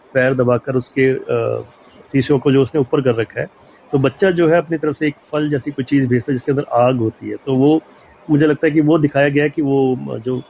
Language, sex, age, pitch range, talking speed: Hindi, male, 30-49, 130-160 Hz, 245 wpm